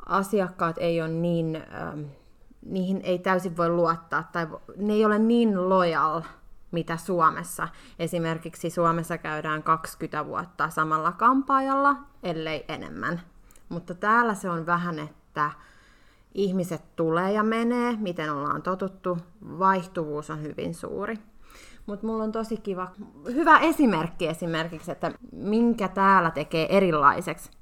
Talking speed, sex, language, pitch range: 120 wpm, female, Finnish, 170-230 Hz